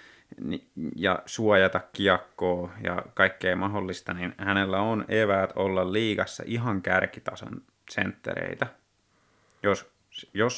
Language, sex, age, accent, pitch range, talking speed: Finnish, male, 30-49, native, 90-100 Hz, 95 wpm